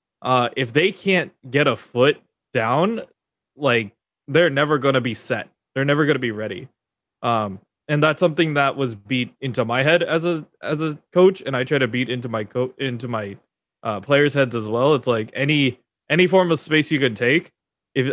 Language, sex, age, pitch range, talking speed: English, male, 20-39, 120-155 Hz, 200 wpm